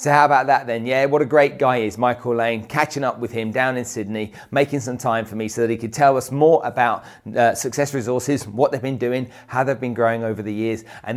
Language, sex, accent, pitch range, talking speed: English, male, British, 110-145 Hz, 260 wpm